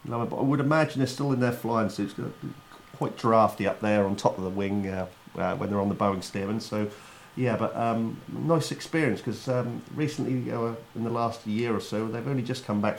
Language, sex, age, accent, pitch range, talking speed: English, male, 40-59, British, 100-120 Hz, 230 wpm